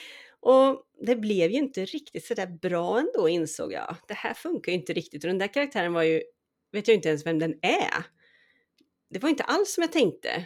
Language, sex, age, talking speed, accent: Swedish, female, 30-49, 220 wpm, native